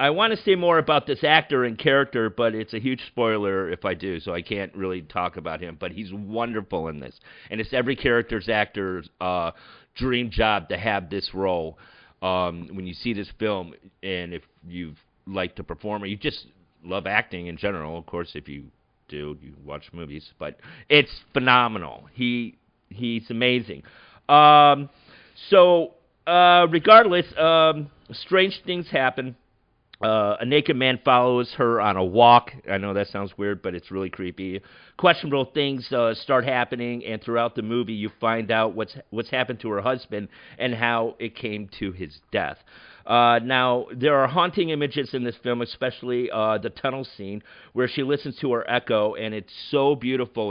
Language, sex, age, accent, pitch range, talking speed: English, male, 40-59, American, 100-130 Hz, 180 wpm